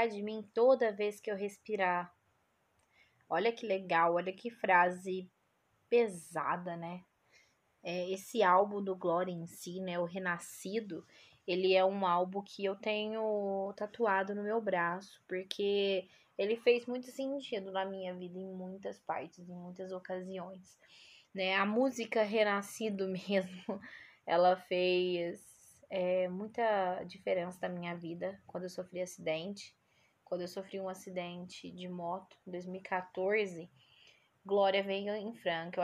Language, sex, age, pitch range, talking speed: Portuguese, female, 20-39, 180-215 Hz, 130 wpm